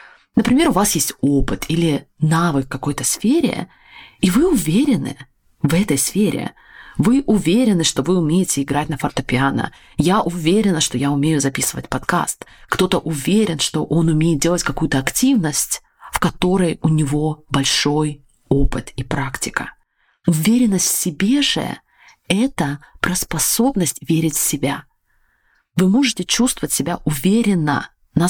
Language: Russian